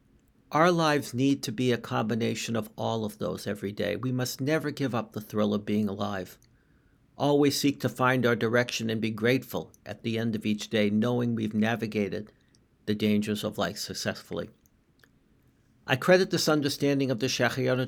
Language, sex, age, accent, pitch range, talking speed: English, male, 60-79, American, 105-130 Hz, 180 wpm